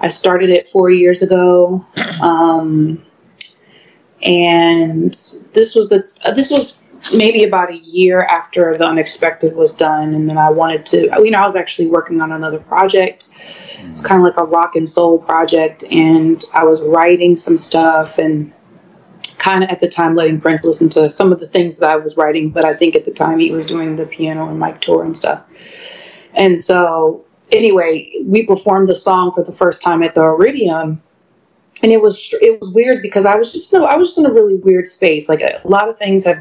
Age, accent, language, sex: 20-39, American, English, female